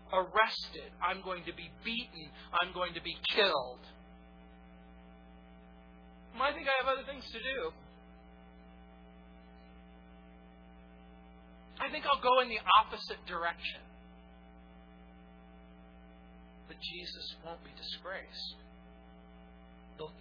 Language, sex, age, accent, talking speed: English, male, 40-59, American, 95 wpm